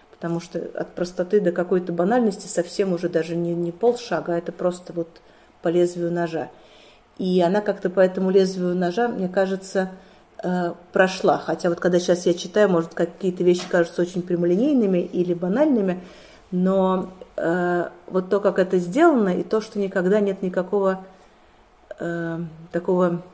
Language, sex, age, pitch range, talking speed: Russian, female, 30-49, 175-200 Hz, 145 wpm